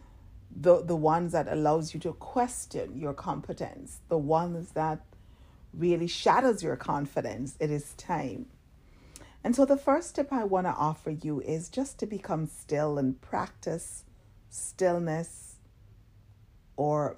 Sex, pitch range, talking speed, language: female, 135-175 Hz, 135 wpm, English